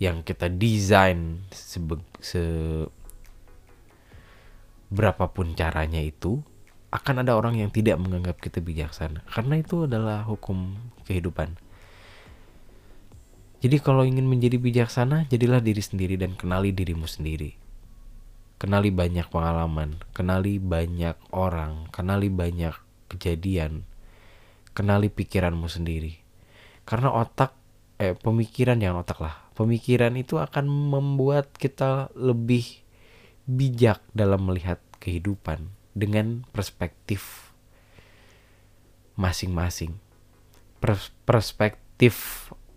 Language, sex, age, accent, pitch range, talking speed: Indonesian, male, 20-39, native, 90-110 Hz, 95 wpm